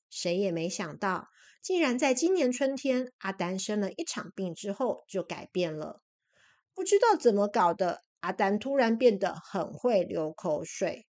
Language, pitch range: Chinese, 195-285 Hz